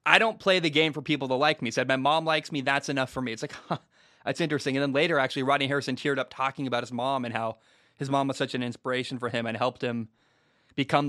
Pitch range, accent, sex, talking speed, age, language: 130-155 Hz, American, male, 270 wpm, 20-39, English